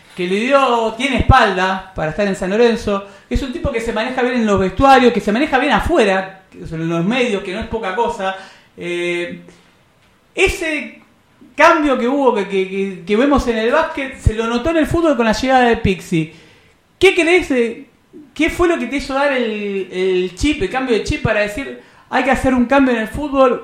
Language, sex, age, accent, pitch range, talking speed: Spanish, male, 40-59, Argentinian, 195-275 Hz, 210 wpm